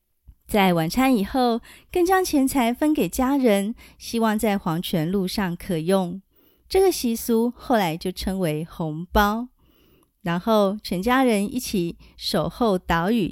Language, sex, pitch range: Chinese, female, 180-250 Hz